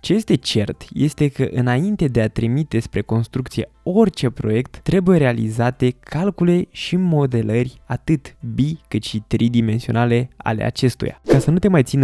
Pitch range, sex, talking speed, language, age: 110-140 Hz, male, 155 wpm, Romanian, 20-39